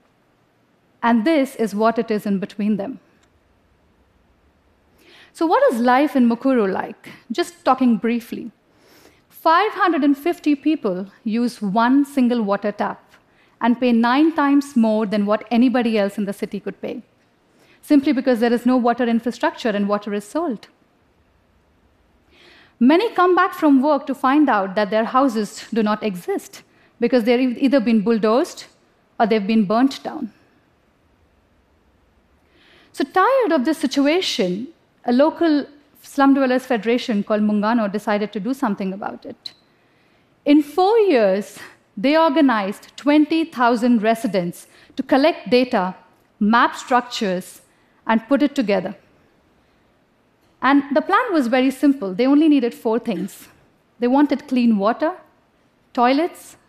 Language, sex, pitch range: Arabic, female, 215-285 Hz